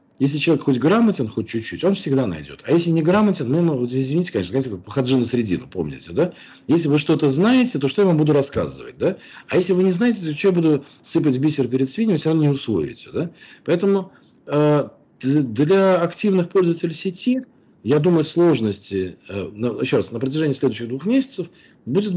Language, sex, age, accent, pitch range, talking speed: Russian, male, 40-59, native, 130-180 Hz, 185 wpm